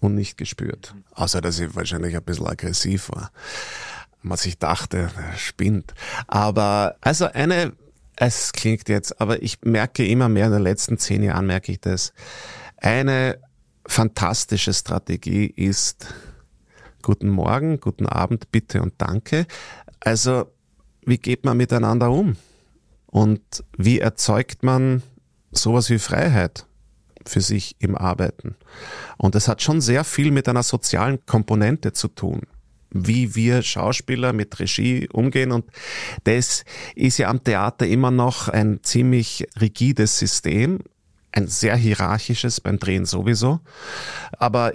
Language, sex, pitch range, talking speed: German, male, 100-120 Hz, 135 wpm